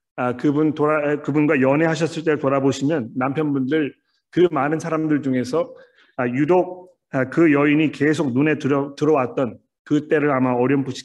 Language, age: Korean, 40-59